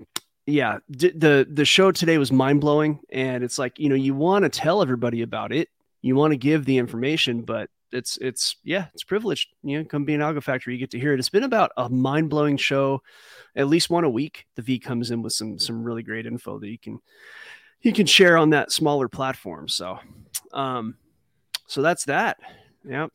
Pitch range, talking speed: 120-145 Hz, 215 wpm